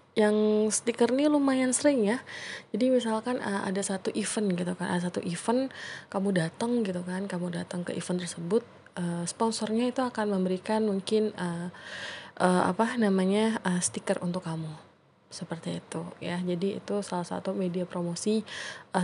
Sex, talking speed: female, 160 wpm